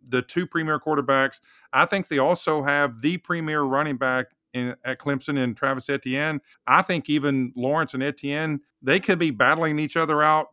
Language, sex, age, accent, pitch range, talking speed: English, male, 50-69, American, 130-165 Hz, 180 wpm